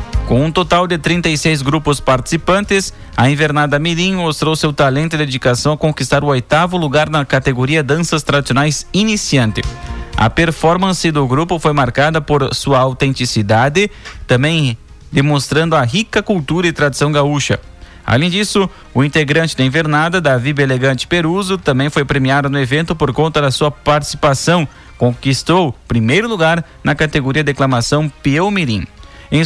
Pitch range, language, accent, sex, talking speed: 135-165 Hz, Portuguese, Brazilian, male, 145 wpm